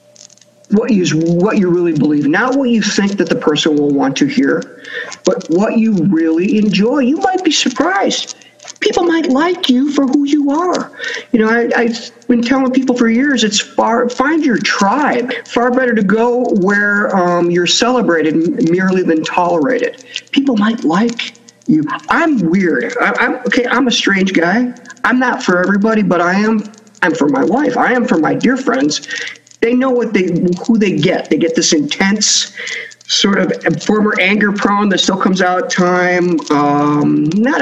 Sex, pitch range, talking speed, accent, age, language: male, 170-250 Hz, 180 wpm, American, 50-69, English